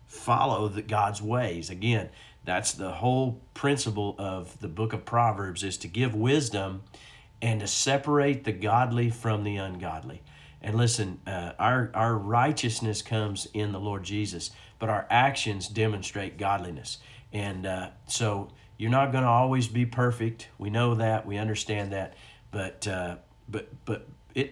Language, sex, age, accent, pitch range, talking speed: English, male, 50-69, American, 100-120 Hz, 150 wpm